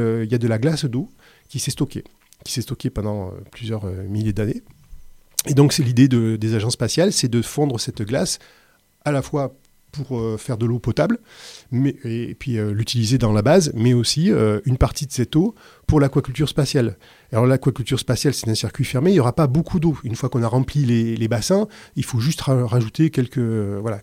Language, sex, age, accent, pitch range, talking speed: French, male, 30-49, French, 115-145 Hz, 205 wpm